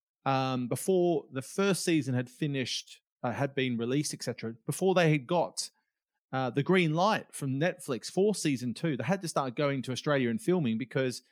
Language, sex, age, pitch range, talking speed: English, male, 30-49, 120-160 Hz, 185 wpm